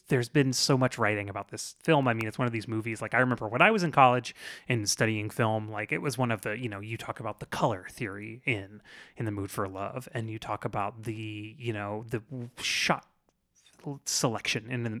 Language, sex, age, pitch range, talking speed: English, male, 30-49, 110-140 Hz, 230 wpm